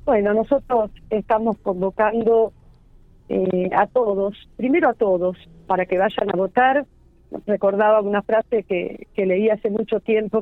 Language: Spanish